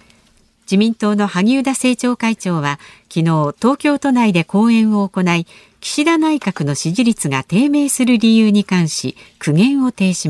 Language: Japanese